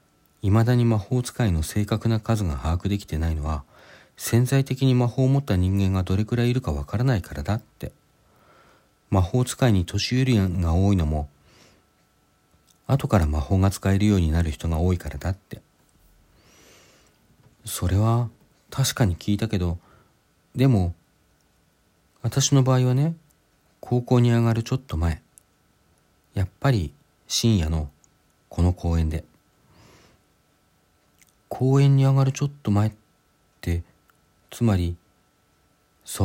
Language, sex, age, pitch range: Japanese, male, 40-59, 80-120 Hz